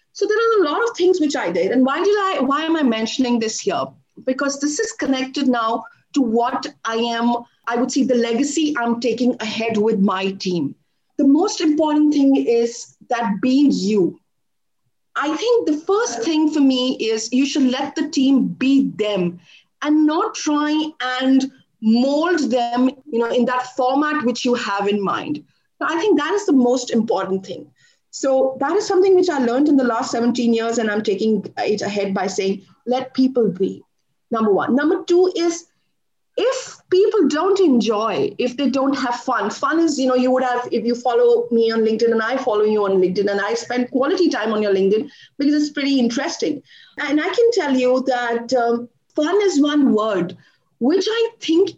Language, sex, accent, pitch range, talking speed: English, female, Indian, 230-305 Hz, 195 wpm